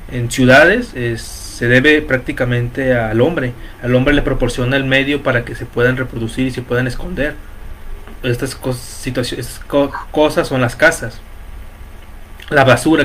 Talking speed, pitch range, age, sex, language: 145 wpm, 110-145 Hz, 30-49, male, Spanish